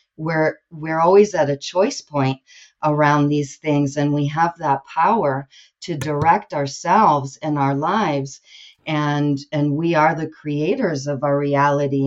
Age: 50-69